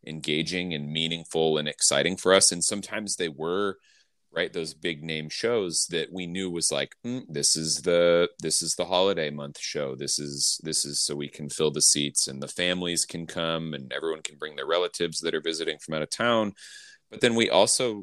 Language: English